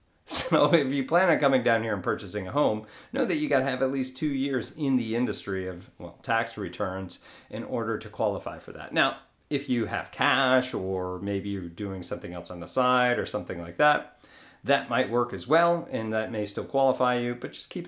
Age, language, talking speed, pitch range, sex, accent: 40-59, English, 225 wpm, 110-145 Hz, male, American